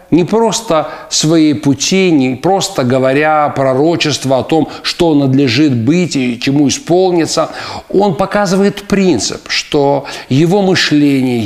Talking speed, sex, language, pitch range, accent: 115 wpm, male, Russian, 135-190 Hz, native